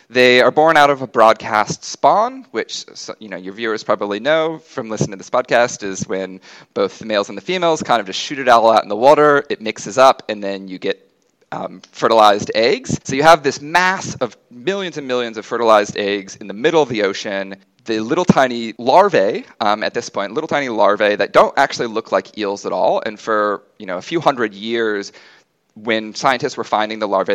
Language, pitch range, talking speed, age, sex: English, 105-150 Hz, 215 wpm, 30-49, male